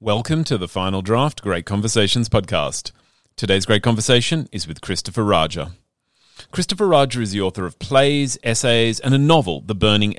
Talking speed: 165 wpm